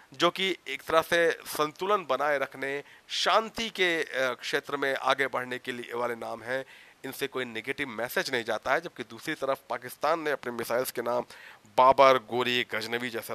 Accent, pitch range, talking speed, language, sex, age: native, 115-150 Hz, 175 wpm, Hindi, male, 40-59